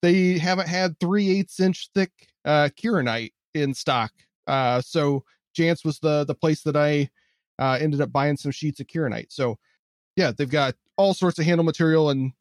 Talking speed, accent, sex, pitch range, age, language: 185 wpm, American, male, 130-155 Hz, 30-49, English